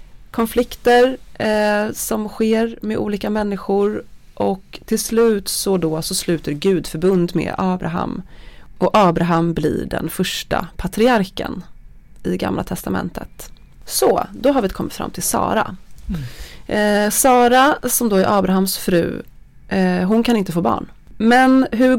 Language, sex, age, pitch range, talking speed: Swedish, female, 30-49, 170-220 Hz, 135 wpm